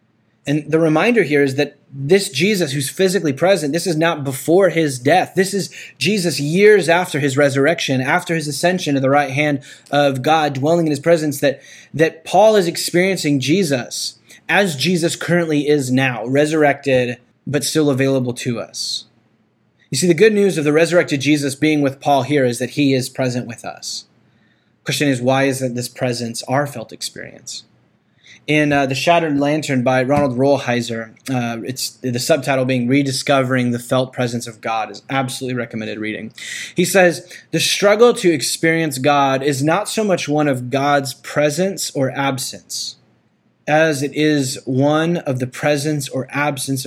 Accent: American